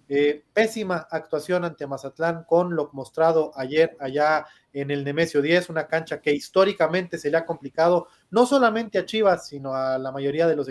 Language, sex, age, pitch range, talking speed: Spanish, male, 30-49, 150-190 Hz, 180 wpm